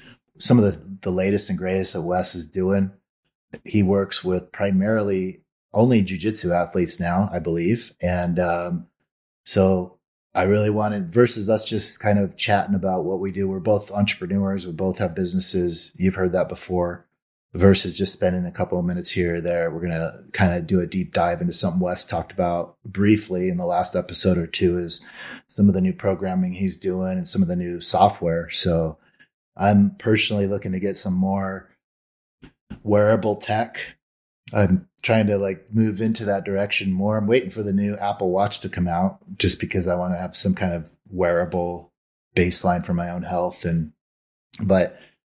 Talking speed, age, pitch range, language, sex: 185 wpm, 30-49, 90-105 Hz, English, male